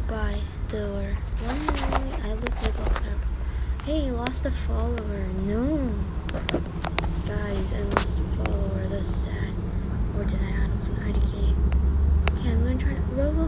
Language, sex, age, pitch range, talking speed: English, female, 20-39, 75-90 Hz, 115 wpm